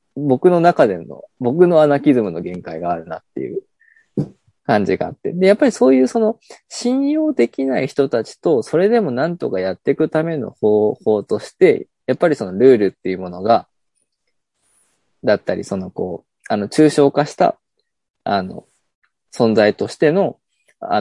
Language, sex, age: Japanese, male, 20-39